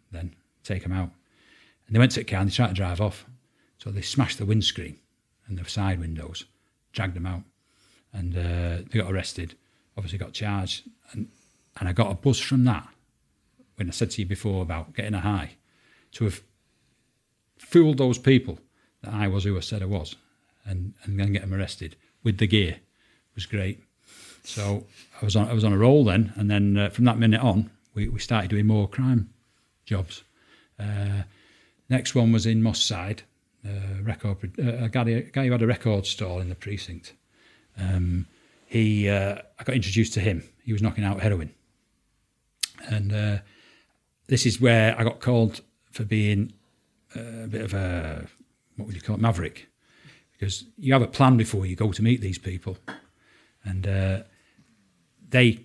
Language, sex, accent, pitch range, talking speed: English, male, British, 95-115 Hz, 185 wpm